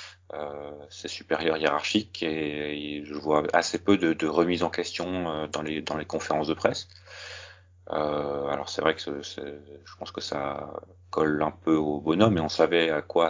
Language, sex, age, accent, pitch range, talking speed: French, male, 30-49, French, 75-90 Hz, 200 wpm